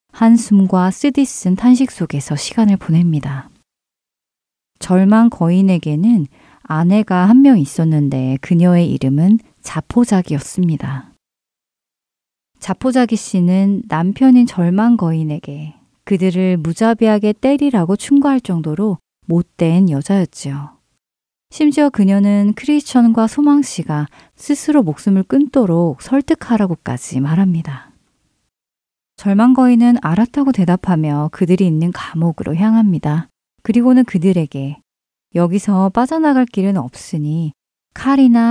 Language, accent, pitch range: Korean, native, 160-230 Hz